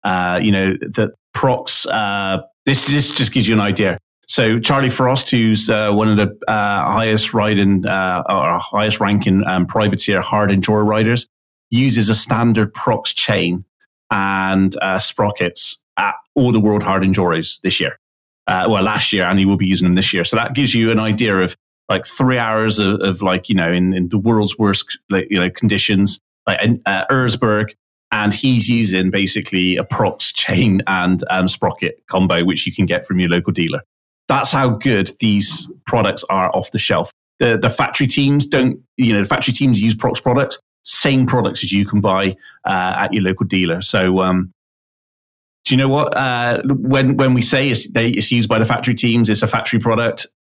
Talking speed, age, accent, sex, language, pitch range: 190 wpm, 30-49, British, male, English, 95-120 Hz